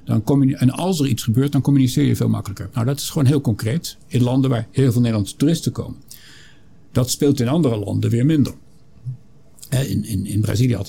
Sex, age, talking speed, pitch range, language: male, 50-69, 195 wpm, 110-135 Hz, Dutch